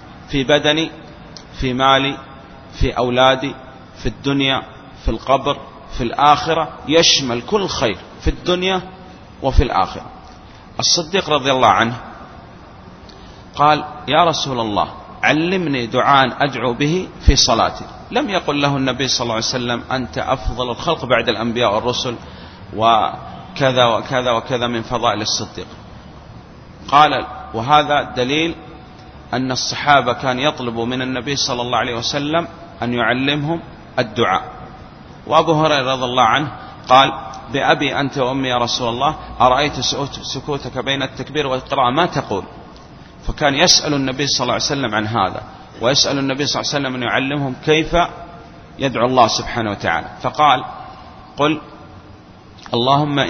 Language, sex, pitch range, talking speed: Arabic, male, 120-145 Hz, 125 wpm